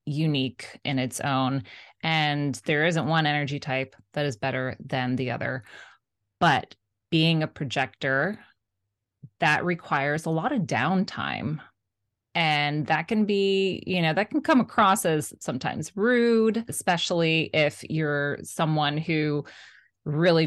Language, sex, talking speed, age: English, female, 130 wpm, 20-39